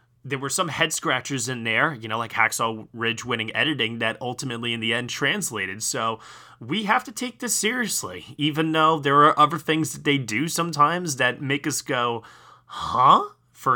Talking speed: 190 wpm